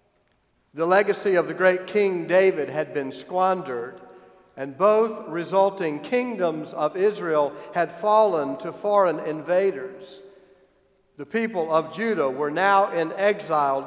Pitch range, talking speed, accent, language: 170-215 Hz, 125 wpm, American, English